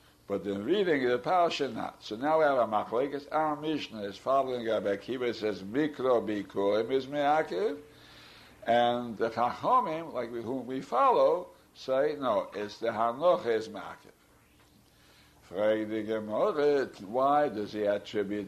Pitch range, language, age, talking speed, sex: 110-155 Hz, English, 60-79, 135 wpm, male